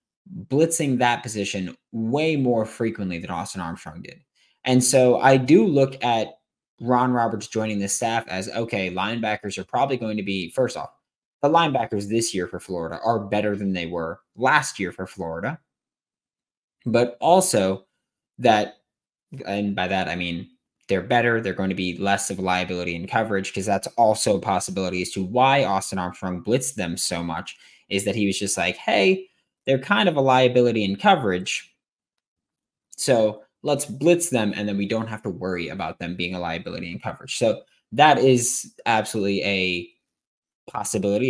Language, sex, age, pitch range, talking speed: English, male, 20-39, 95-125 Hz, 170 wpm